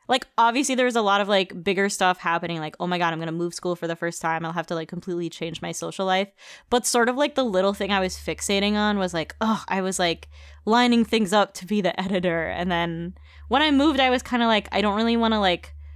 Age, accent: 10-29, American